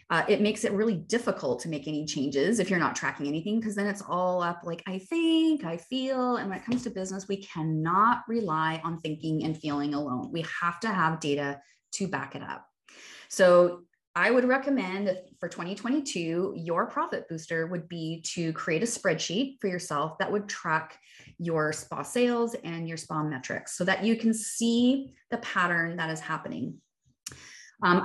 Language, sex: English, female